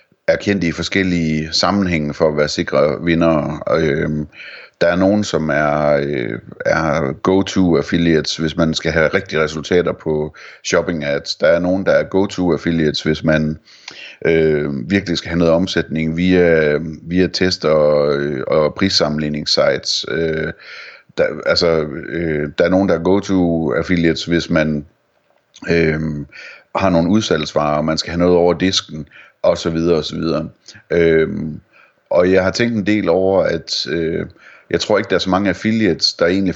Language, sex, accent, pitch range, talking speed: Danish, male, native, 80-95 Hz, 160 wpm